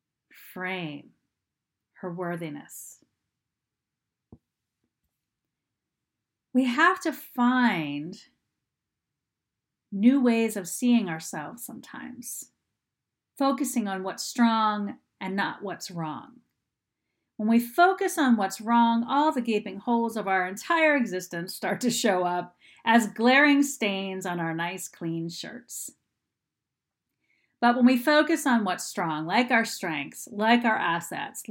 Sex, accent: female, American